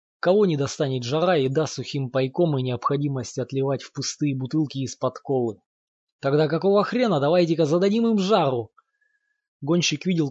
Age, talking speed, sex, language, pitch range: 20-39, 145 wpm, male, Russian, 130-160 Hz